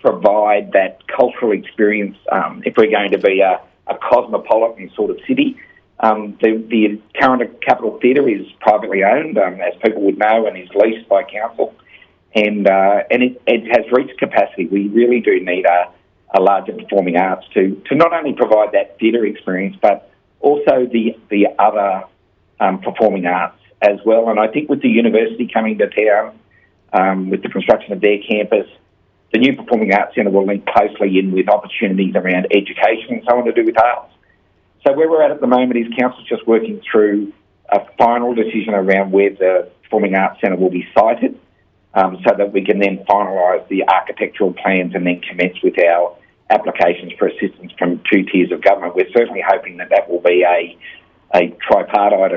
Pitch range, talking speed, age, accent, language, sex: 95-115 Hz, 185 wpm, 50-69, Australian, English, male